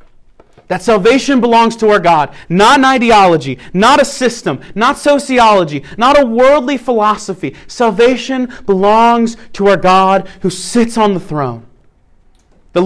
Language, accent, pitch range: English, American, 155-230 Hz